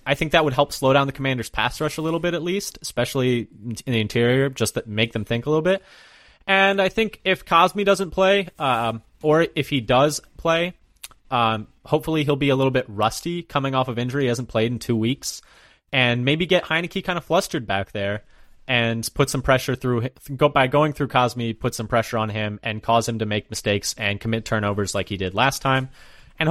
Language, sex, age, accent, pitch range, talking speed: English, male, 20-39, American, 110-150 Hz, 220 wpm